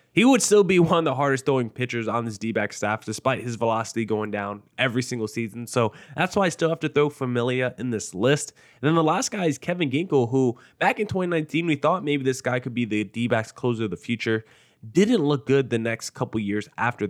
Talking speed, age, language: 230 wpm, 20-39, English